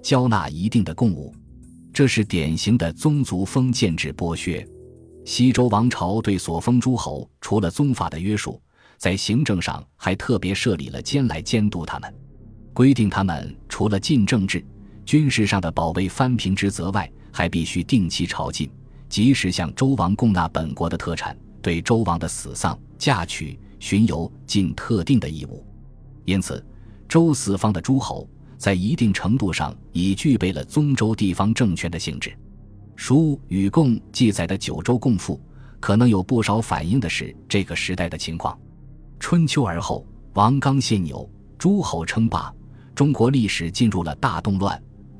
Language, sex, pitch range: Chinese, male, 90-125 Hz